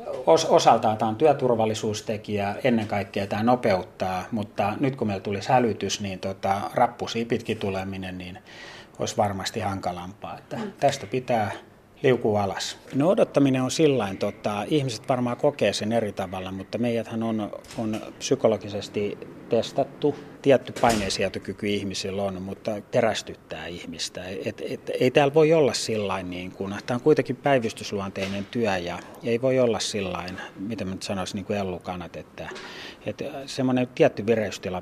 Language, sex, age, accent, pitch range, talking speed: Finnish, male, 30-49, native, 95-115 Hz, 145 wpm